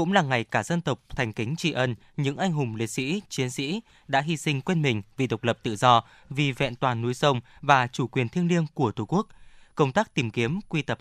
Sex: male